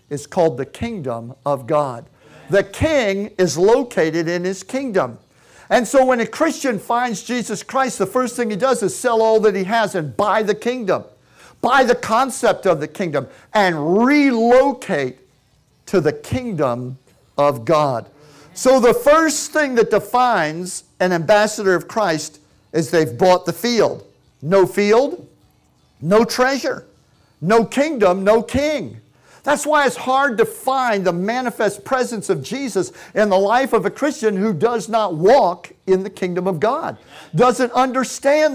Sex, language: male, English